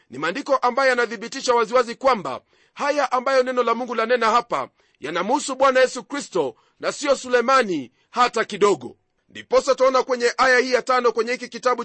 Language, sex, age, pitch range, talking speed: Swahili, male, 40-59, 235-265 Hz, 160 wpm